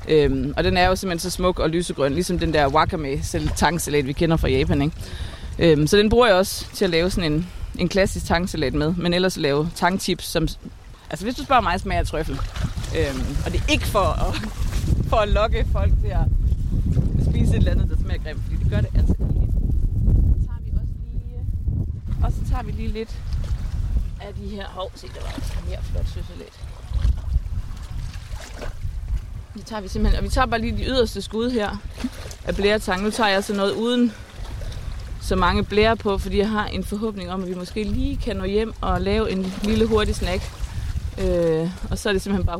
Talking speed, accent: 205 wpm, native